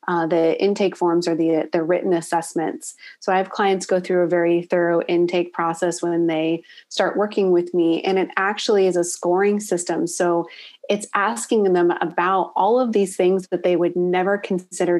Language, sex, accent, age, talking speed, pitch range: English, female, American, 30-49, 190 wpm, 175-205 Hz